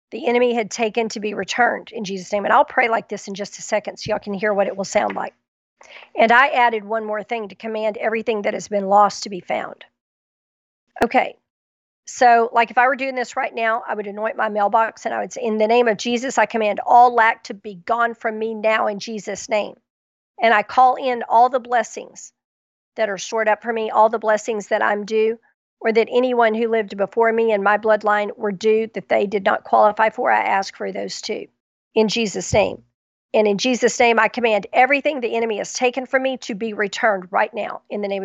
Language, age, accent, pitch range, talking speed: English, 50-69, American, 210-235 Hz, 230 wpm